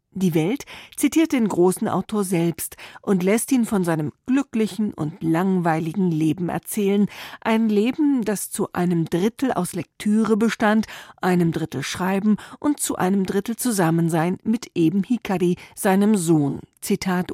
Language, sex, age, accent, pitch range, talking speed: German, female, 40-59, German, 170-215 Hz, 140 wpm